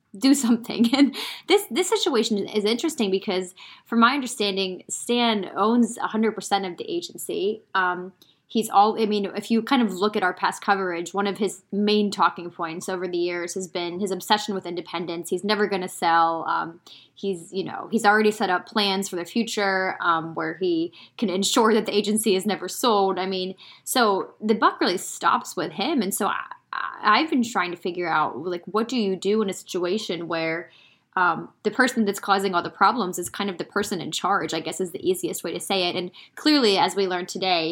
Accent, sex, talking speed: American, female, 210 wpm